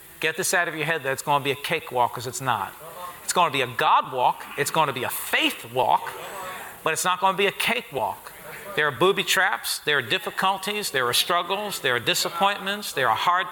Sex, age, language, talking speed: male, 40-59, English, 240 wpm